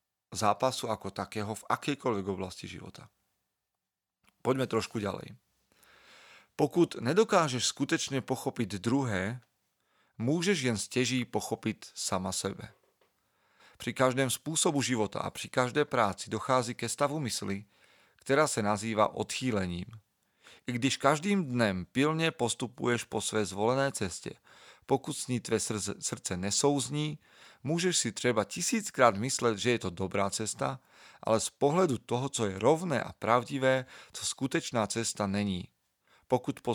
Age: 40-59